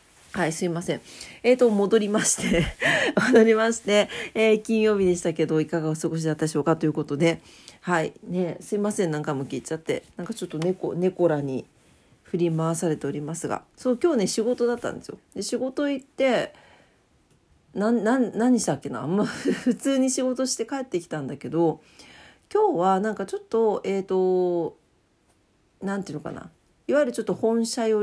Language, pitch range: Japanese, 160-225 Hz